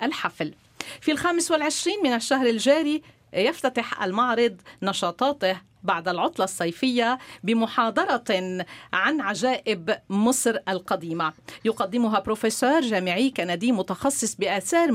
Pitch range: 195-250 Hz